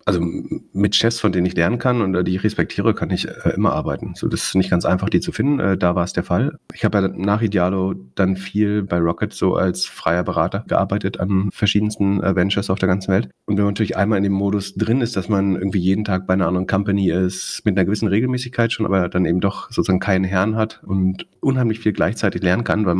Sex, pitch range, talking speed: male, 95-110 Hz, 250 wpm